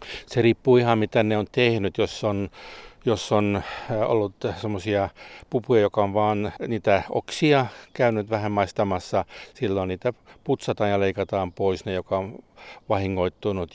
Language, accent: Finnish, native